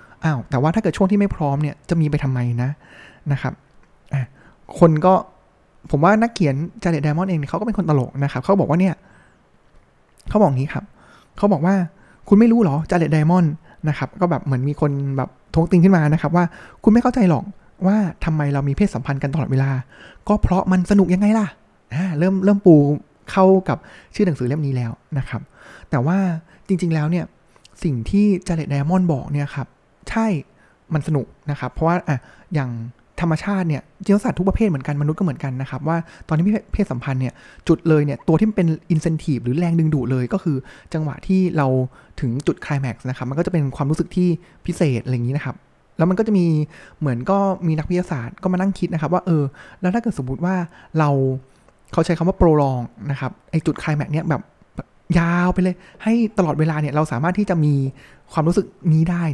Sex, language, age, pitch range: male, Thai, 20-39, 140-185 Hz